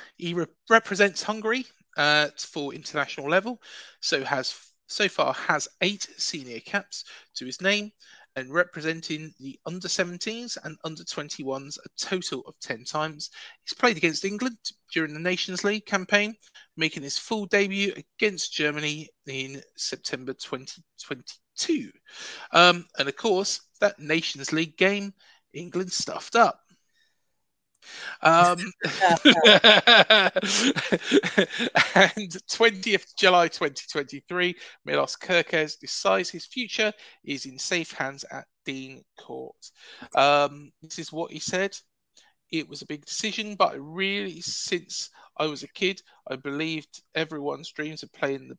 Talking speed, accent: 125 wpm, British